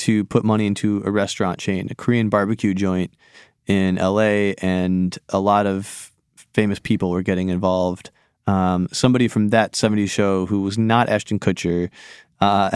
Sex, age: male, 20-39